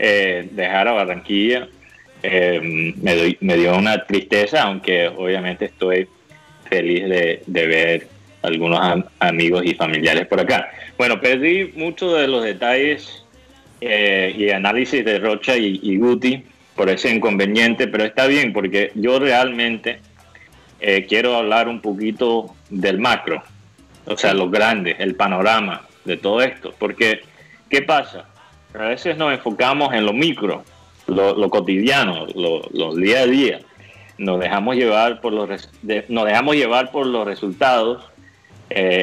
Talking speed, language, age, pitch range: 140 wpm, Spanish, 30-49, 95-125 Hz